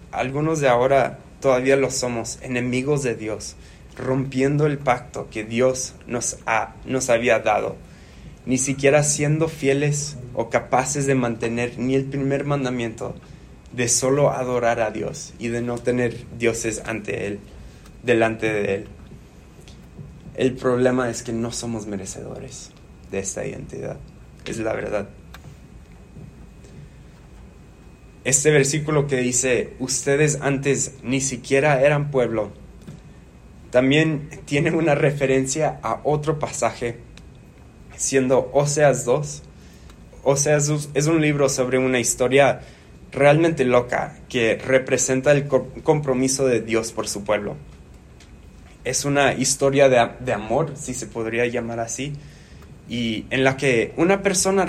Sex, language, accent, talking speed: male, English, Mexican, 125 wpm